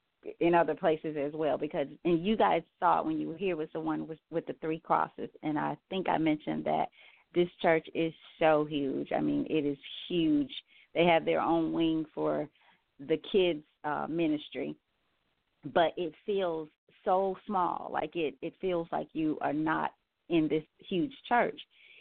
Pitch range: 150-170 Hz